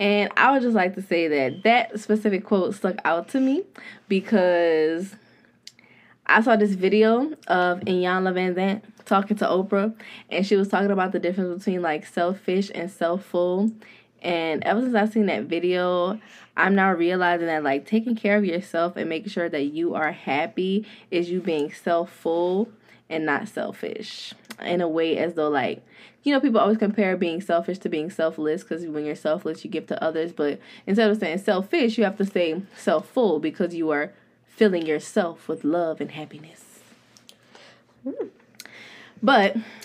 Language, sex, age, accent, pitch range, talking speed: English, female, 10-29, American, 170-215 Hz, 170 wpm